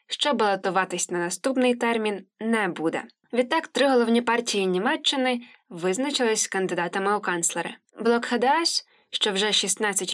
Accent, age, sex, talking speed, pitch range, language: native, 20-39, female, 125 wpm, 190-255 Hz, Ukrainian